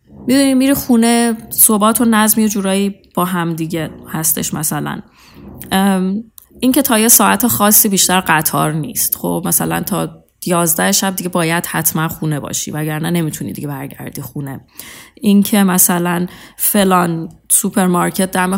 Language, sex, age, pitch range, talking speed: English, female, 20-39, 165-200 Hz, 140 wpm